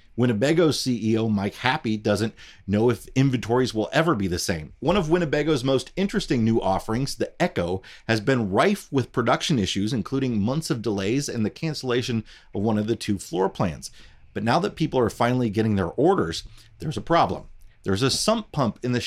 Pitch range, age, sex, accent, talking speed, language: 100-130 Hz, 30-49, male, American, 190 wpm, English